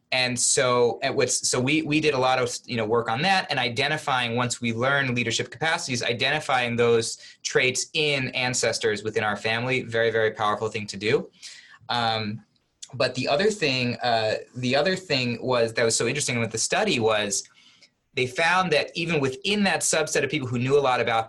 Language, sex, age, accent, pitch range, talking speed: English, male, 30-49, American, 115-140 Hz, 190 wpm